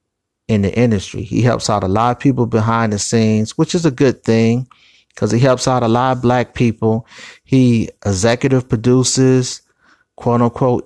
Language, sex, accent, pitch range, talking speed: English, male, American, 110-125 Hz, 175 wpm